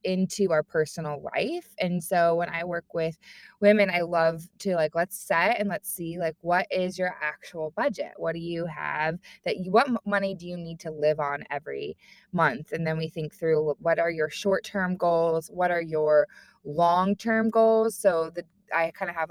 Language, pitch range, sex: English, 160-195 Hz, female